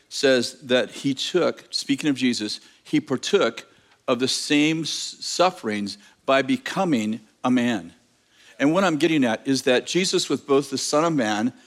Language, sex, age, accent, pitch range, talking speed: English, male, 50-69, American, 130-165 Hz, 160 wpm